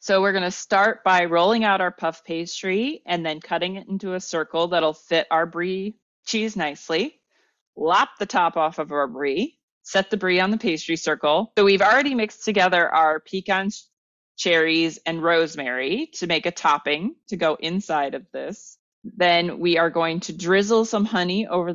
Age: 30-49